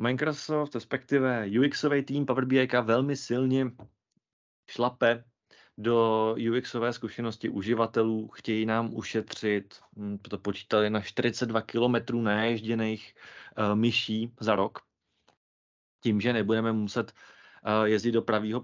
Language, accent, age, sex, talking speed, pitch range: Czech, native, 30-49, male, 110 wpm, 105-120 Hz